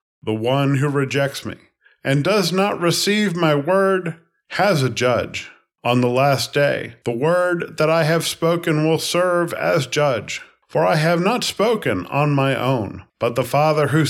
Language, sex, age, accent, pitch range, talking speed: English, male, 50-69, American, 125-165 Hz, 170 wpm